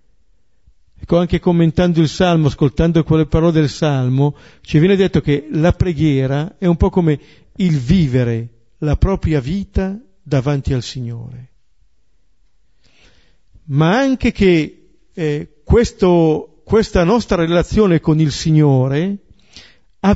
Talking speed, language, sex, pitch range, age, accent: 115 wpm, Italian, male, 120-165 Hz, 50-69, native